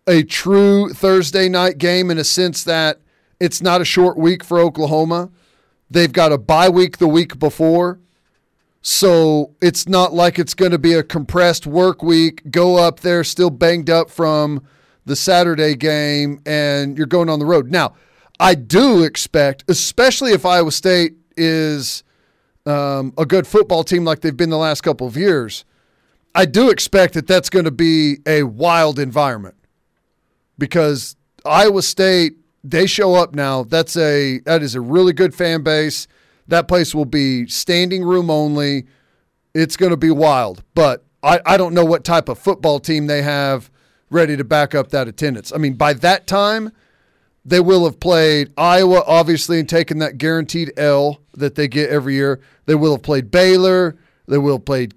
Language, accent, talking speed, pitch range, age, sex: English, American, 175 wpm, 145-175 Hz, 40-59, male